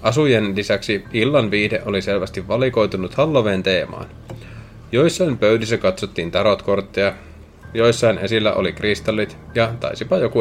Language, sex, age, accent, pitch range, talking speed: Finnish, male, 30-49, native, 100-125 Hz, 115 wpm